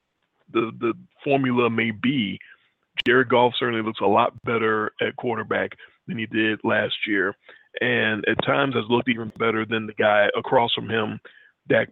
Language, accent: English, American